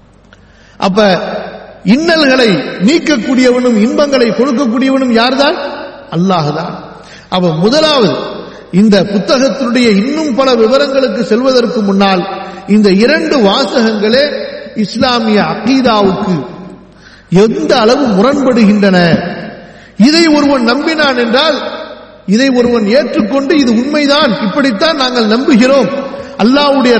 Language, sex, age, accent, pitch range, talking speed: Tamil, male, 50-69, native, 210-270 Hz, 80 wpm